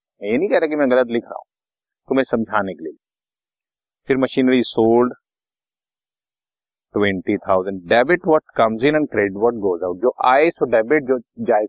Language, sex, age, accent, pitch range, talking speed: Hindi, male, 40-59, native, 110-155 Hz, 150 wpm